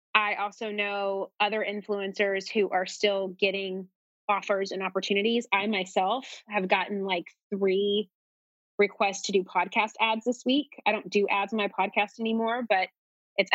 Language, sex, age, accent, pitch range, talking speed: English, female, 20-39, American, 195-240 Hz, 155 wpm